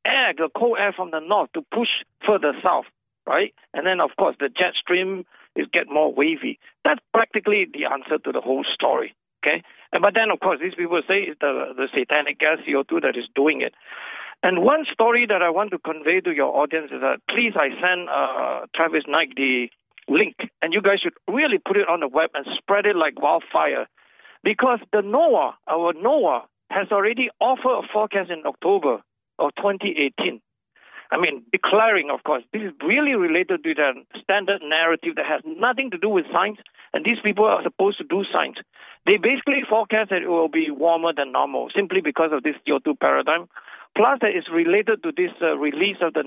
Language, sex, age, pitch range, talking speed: English, male, 50-69, 160-245 Hz, 200 wpm